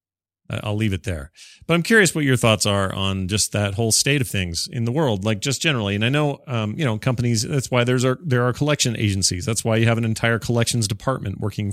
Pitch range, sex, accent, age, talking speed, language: 100-140 Hz, male, American, 40-59, 245 wpm, English